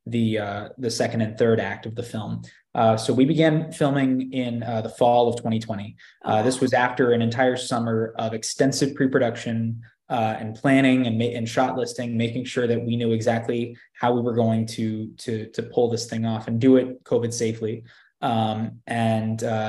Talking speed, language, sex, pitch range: 190 wpm, English, male, 110-125 Hz